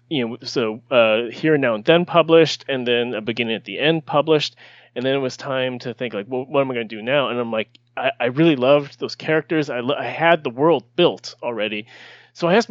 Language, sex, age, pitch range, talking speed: English, male, 30-49, 125-160 Hz, 255 wpm